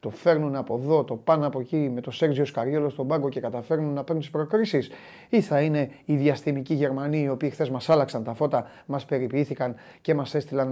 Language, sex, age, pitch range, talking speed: Greek, male, 30-49, 125-150 Hz, 205 wpm